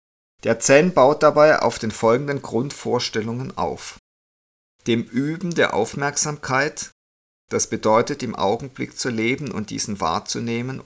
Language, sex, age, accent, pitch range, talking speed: German, male, 50-69, German, 100-130 Hz, 120 wpm